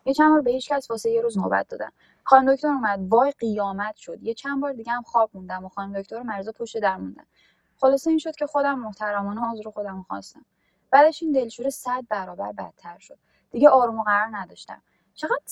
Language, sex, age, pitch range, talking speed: Persian, female, 10-29, 200-270 Hz, 195 wpm